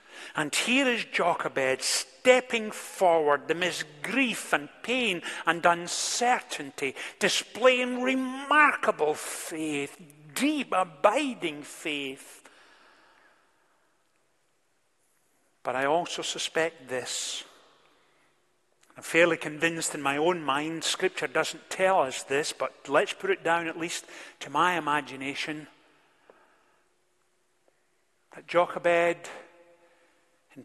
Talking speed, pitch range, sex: 95 wpm, 160-180 Hz, male